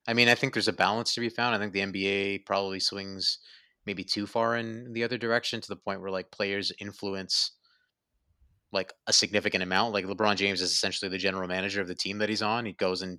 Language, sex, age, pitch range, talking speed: English, male, 20-39, 95-105 Hz, 230 wpm